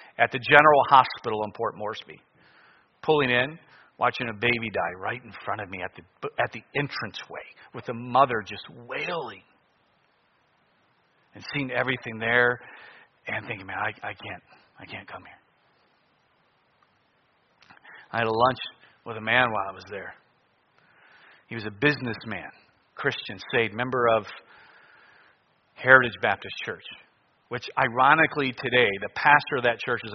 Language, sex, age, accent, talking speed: English, male, 40-59, American, 145 wpm